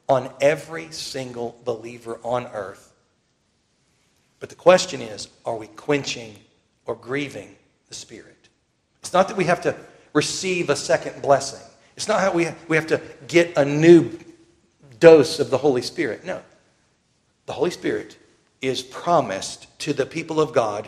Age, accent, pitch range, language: 50-69, American, 125-155 Hz, English